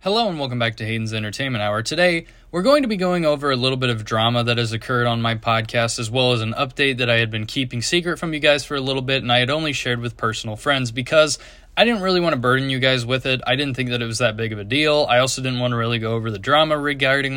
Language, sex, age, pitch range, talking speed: English, male, 20-39, 120-145 Hz, 285 wpm